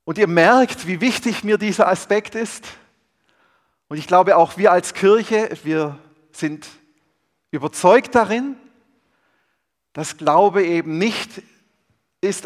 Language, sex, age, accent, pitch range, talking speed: German, male, 40-59, German, 140-205 Hz, 120 wpm